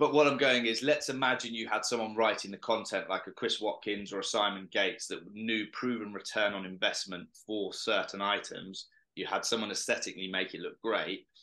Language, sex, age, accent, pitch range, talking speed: English, male, 20-39, British, 100-120 Hz, 200 wpm